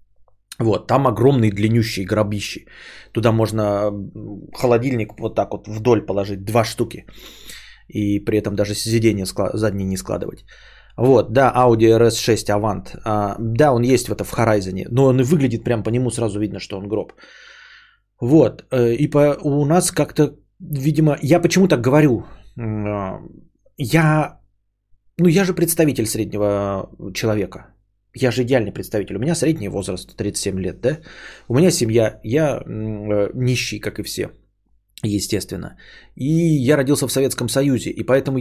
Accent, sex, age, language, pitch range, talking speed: native, male, 20-39, Russian, 105-140 Hz, 150 wpm